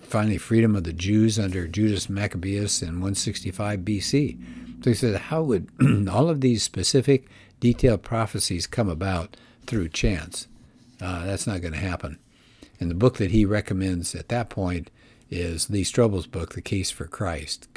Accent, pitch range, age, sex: American, 90-120 Hz, 60-79, male